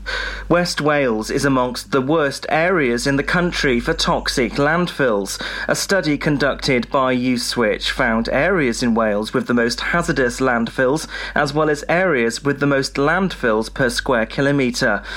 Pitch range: 125-165 Hz